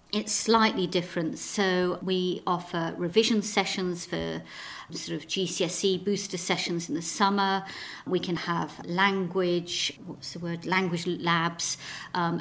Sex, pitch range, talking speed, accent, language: female, 170-195 Hz, 130 wpm, British, English